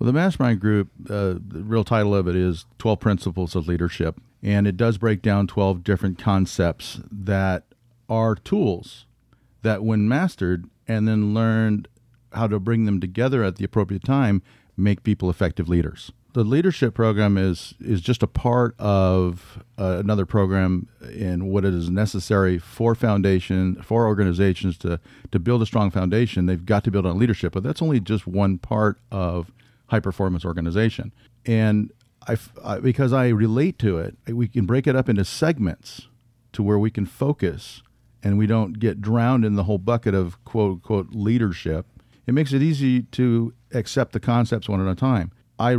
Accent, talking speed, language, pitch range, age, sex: American, 175 wpm, English, 95-120 Hz, 40-59, male